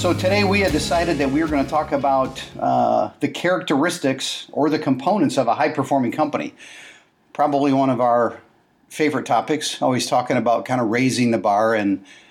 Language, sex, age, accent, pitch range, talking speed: English, male, 50-69, American, 115-145 Hz, 180 wpm